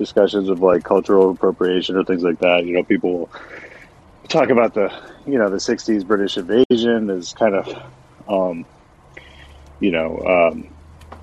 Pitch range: 95-115 Hz